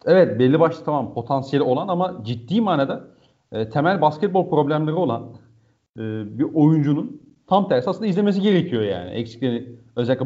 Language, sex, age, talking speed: Turkish, male, 40-59, 145 wpm